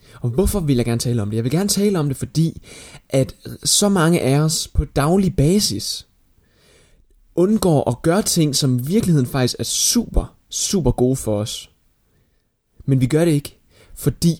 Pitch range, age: 120-160 Hz, 20-39